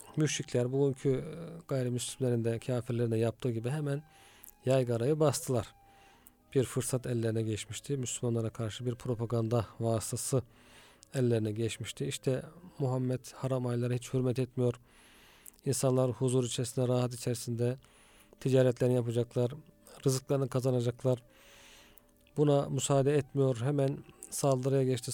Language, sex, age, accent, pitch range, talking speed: Turkish, male, 40-59, native, 115-135 Hz, 105 wpm